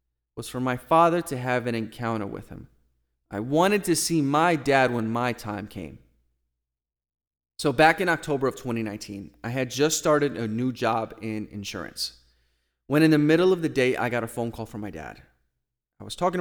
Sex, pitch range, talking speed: male, 105-135 Hz, 195 wpm